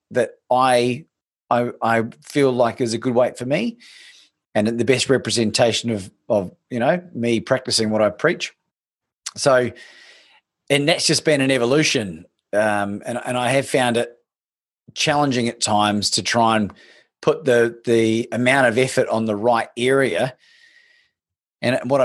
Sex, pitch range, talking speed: male, 115-135 Hz, 155 wpm